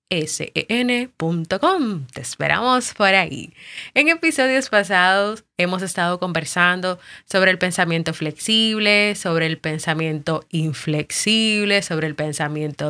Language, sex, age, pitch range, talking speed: Spanish, female, 20-39, 165-215 Hz, 110 wpm